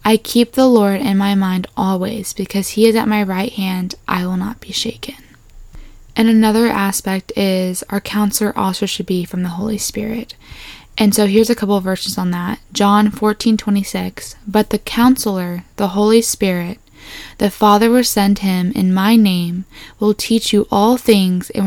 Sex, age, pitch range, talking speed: female, 10-29, 195-225 Hz, 185 wpm